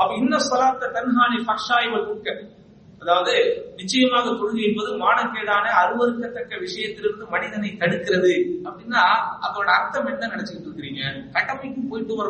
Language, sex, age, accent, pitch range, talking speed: English, male, 40-59, Indian, 180-255 Hz, 85 wpm